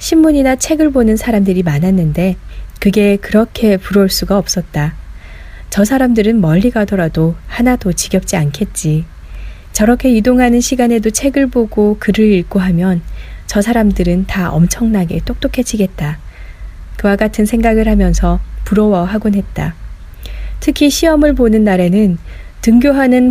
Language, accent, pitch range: Korean, native, 175-225 Hz